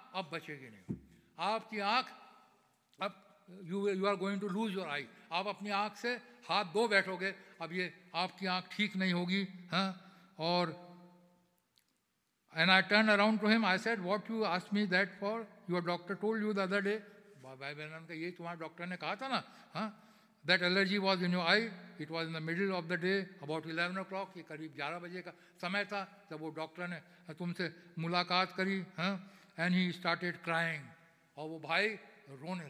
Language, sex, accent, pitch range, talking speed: English, male, Indian, 170-220 Hz, 160 wpm